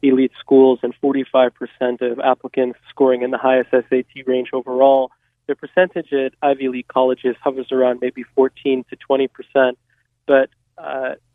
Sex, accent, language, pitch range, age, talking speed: male, American, English, 130-140 Hz, 20-39, 145 wpm